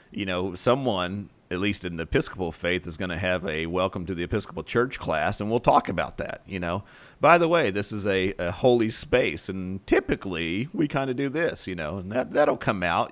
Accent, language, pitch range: American, English, 90-105 Hz